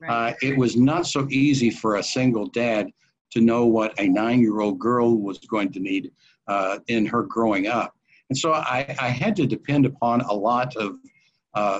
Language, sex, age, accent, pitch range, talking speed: English, male, 60-79, American, 115-135 Hz, 190 wpm